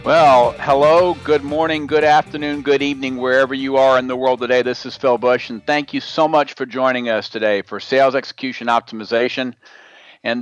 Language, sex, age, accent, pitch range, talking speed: English, male, 50-69, American, 115-145 Hz, 190 wpm